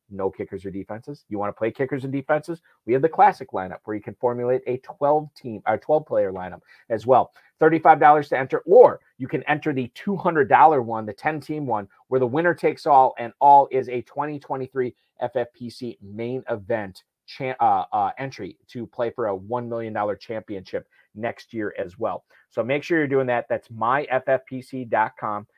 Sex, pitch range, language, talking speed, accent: male, 115-140 Hz, English, 185 wpm, American